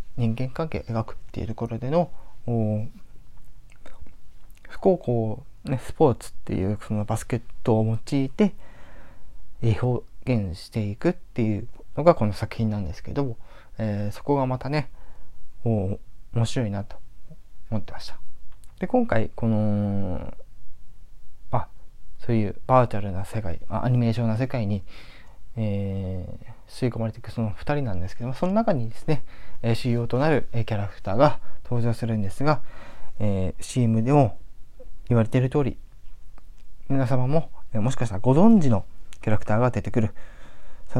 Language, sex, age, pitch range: Japanese, male, 20-39, 105-130 Hz